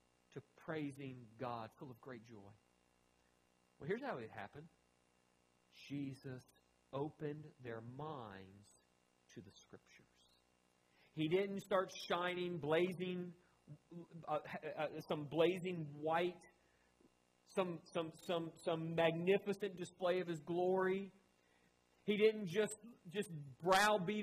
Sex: male